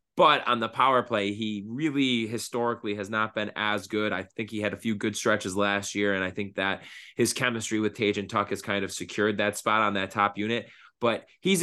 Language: English